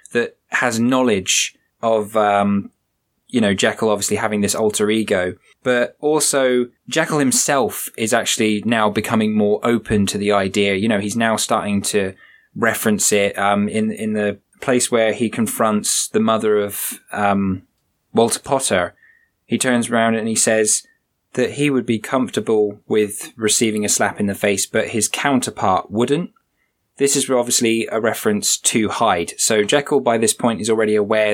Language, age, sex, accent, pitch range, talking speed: English, 20-39, male, British, 105-125 Hz, 165 wpm